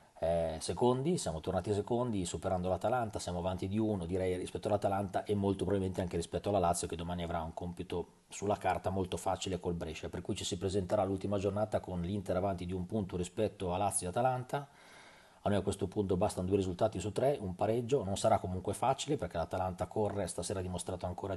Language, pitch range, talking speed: Italian, 90-100 Hz, 205 wpm